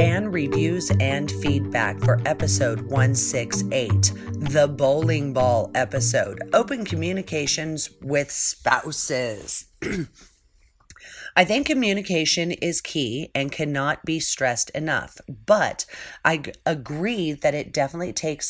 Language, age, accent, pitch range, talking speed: English, 40-59, American, 130-170 Hz, 105 wpm